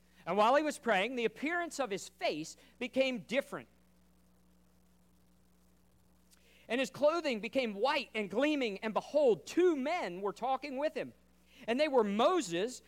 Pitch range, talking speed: 160-265 Hz, 145 wpm